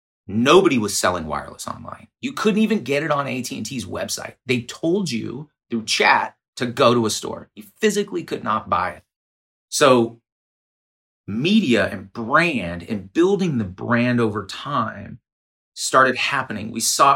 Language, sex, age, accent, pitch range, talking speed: English, male, 30-49, American, 100-125 Hz, 150 wpm